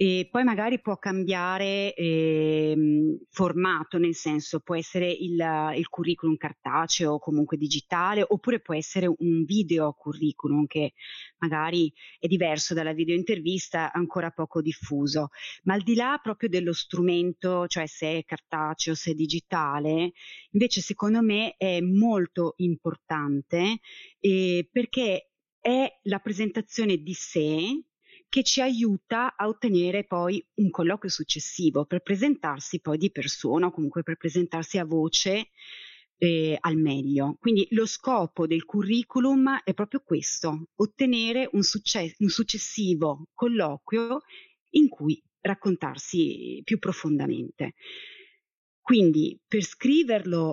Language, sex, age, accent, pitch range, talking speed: Italian, female, 30-49, native, 160-215 Hz, 125 wpm